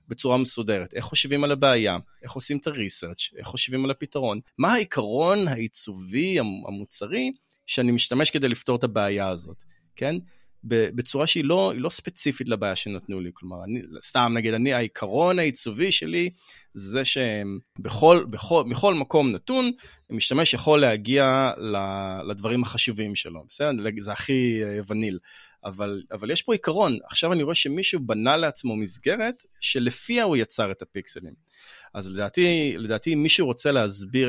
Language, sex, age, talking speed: Hebrew, male, 30-49, 145 wpm